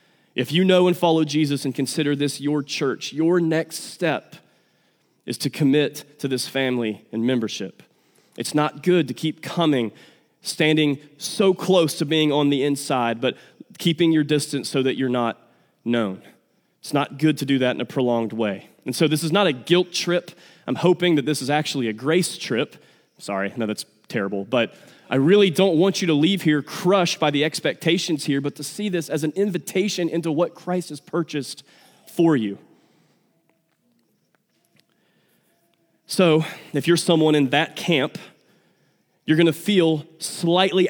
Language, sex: English, male